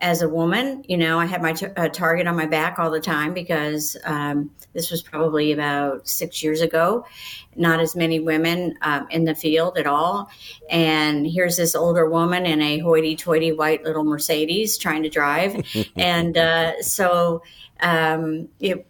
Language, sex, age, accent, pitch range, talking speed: English, female, 50-69, American, 160-190 Hz, 170 wpm